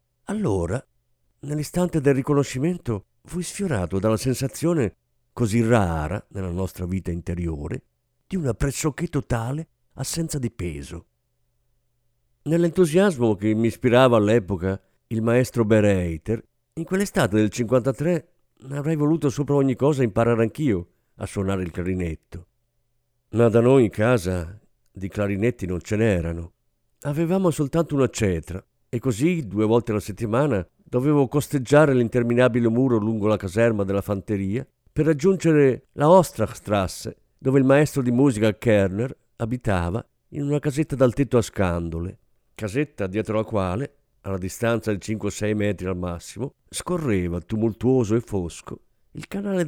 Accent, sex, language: native, male, Italian